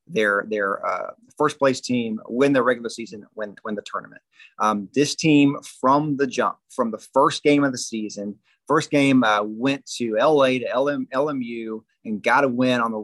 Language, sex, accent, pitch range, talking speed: English, male, American, 115-150 Hz, 195 wpm